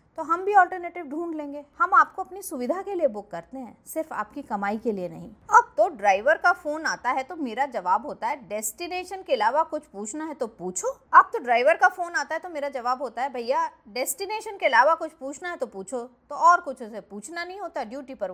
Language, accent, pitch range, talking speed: Hindi, native, 235-350 Hz, 230 wpm